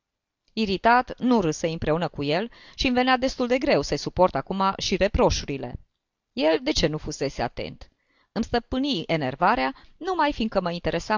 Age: 20-39